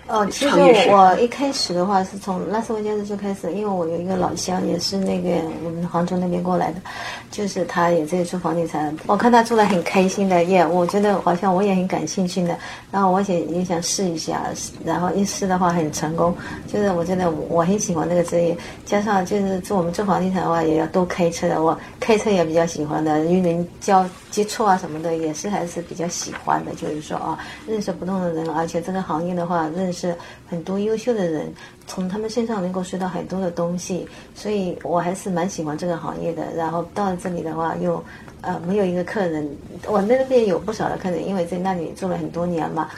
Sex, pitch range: female, 170-195 Hz